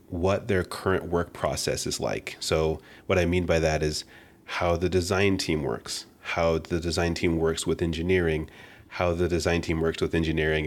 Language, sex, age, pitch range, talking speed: English, male, 30-49, 80-90 Hz, 185 wpm